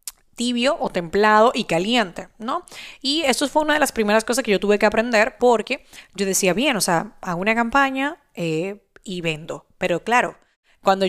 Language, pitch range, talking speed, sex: Spanish, 195-245 Hz, 185 wpm, female